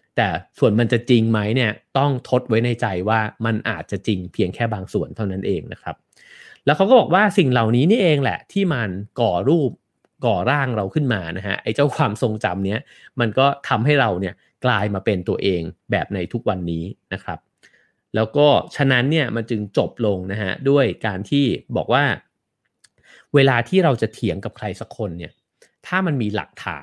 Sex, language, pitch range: male, English, 100-130 Hz